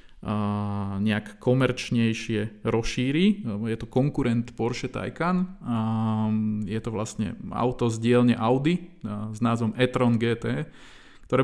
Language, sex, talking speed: Slovak, male, 105 wpm